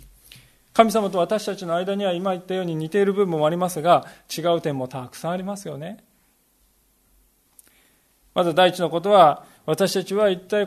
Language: Japanese